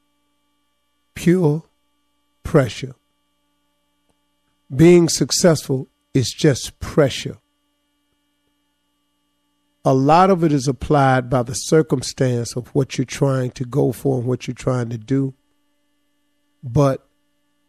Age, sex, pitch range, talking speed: 50-69, male, 130-170 Hz, 100 wpm